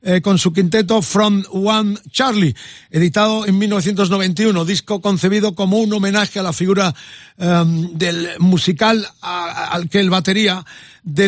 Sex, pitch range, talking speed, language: male, 175-205 Hz, 150 wpm, Spanish